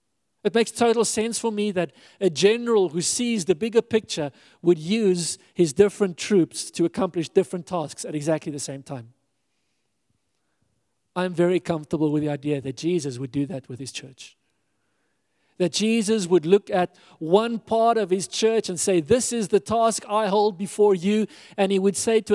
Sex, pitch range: male, 175-215 Hz